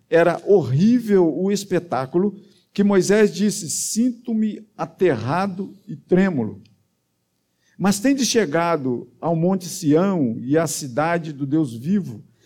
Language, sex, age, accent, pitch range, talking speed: Portuguese, male, 50-69, Brazilian, 135-190 Hz, 115 wpm